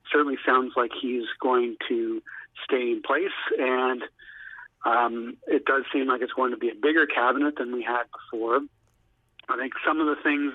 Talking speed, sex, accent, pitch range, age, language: 180 wpm, male, American, 125-155 Hz, 40-59, English